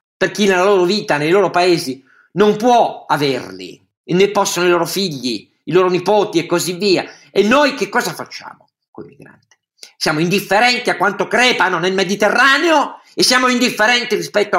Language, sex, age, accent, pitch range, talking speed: Italian, male, 50-69, native, 140-195 Hz, 175 wpm